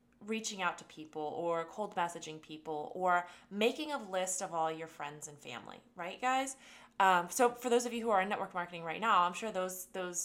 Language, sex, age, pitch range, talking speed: English, female, 20-39, 175-230 Hz, 215 wpm